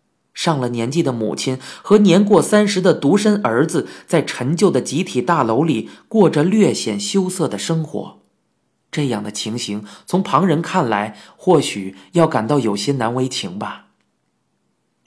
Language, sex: Chinese, male